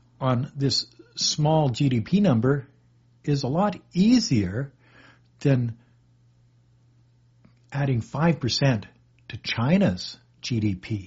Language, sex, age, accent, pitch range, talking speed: English, male, 60-79, American, 120-155 Hz, 80 wpm